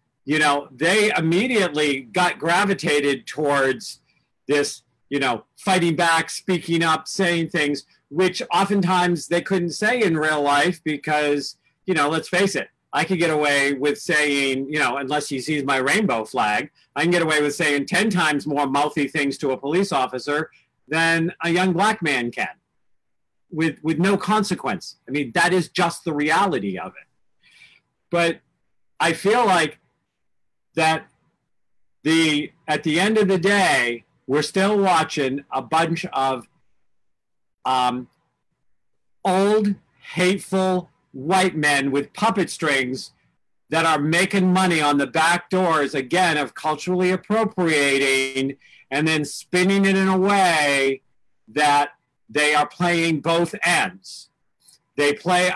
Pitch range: 145-180 Hz